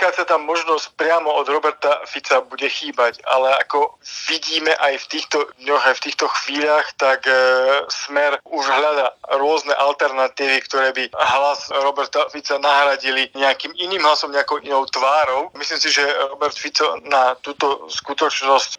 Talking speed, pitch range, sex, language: 155 wpm, 130-150 Hz, male, Slovak